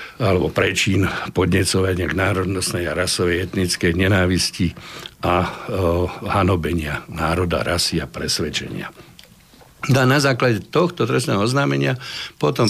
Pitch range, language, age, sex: 95-115 Hz, Slovak, 60-79, male